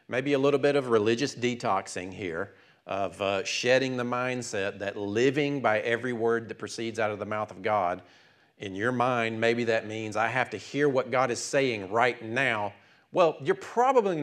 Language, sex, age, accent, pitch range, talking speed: English, male, 40-59, American, 115-150 Hz, 190 wpm